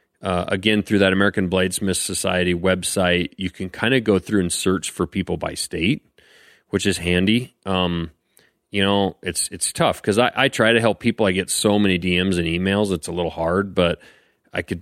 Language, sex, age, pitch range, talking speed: English, male, 30-49, 90-105 Hz, 205 wpm